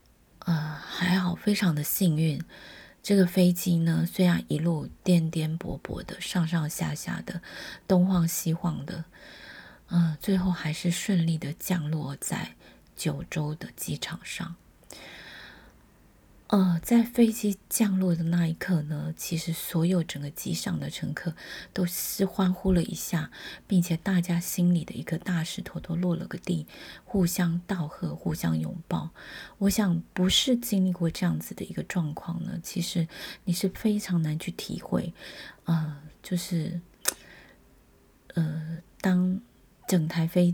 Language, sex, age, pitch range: Chinese, female, 20-39, 160-185 Hz